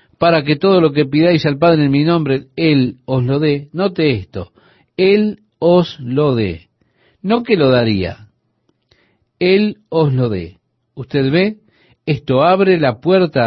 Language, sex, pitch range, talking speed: Spanish, male, 115-170 Hz, 155 wpm